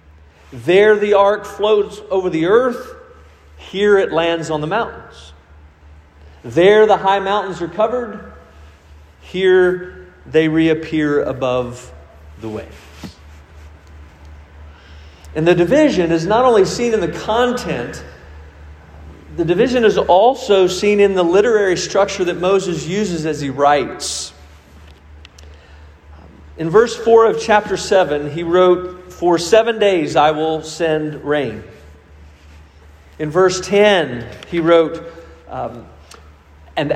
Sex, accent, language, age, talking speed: male, American, English, 40-59, 115 wpm